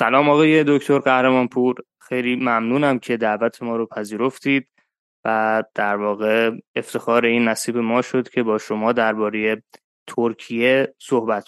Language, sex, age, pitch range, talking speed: Persian, male, 20-39, 115-135 Hz, 135 wpm